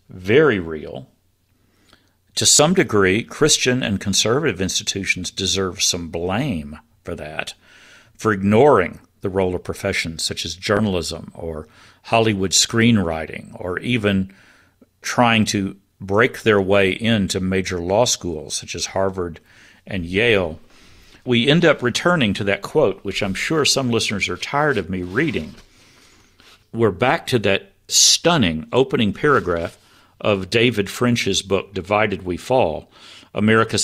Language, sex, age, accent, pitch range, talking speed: English, male, 50-69, American, 95-115 Hz, 130 wpm